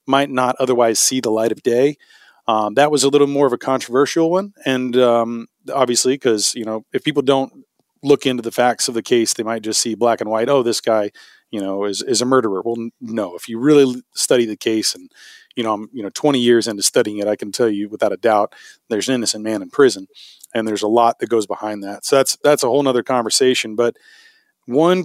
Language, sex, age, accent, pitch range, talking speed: English, male, 30-49, American, 110-130 Hz, 240 wpm